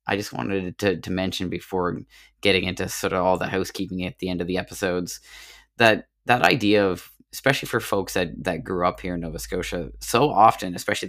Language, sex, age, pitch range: English, male, 20-39, 90-100 Hz